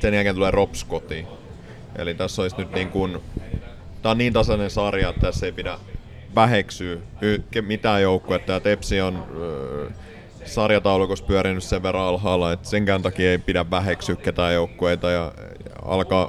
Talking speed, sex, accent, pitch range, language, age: 145 wpm, male, native, 90-105 Hz, Finnish, 30-49